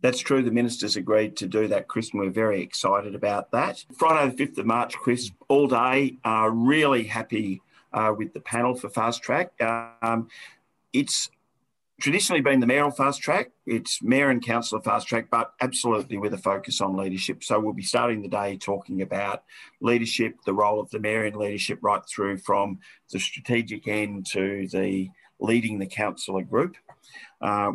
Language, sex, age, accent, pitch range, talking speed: English, male, 40-59, Australian, 100-120 Hz, 180 wpm